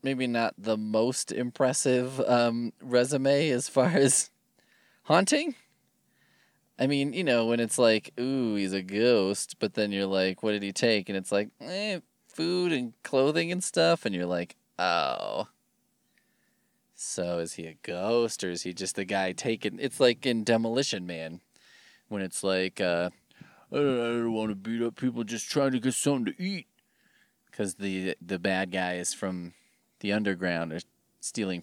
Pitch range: 95-125 Hz